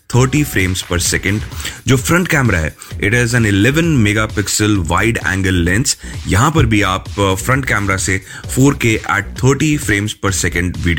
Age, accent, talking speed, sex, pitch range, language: 30-49, native, 165 wpm, male, 100-120 Hz, Hindi